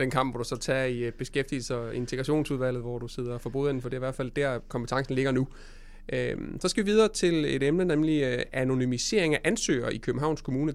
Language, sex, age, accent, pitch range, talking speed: English, male, 30-49, Danish, 125-155 Hz, 230 wpm